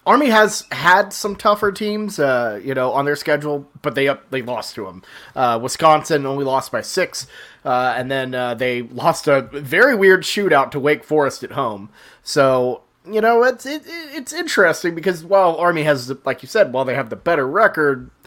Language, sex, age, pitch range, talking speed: English, male, 30-49, 130-170 Hz, 195 wpm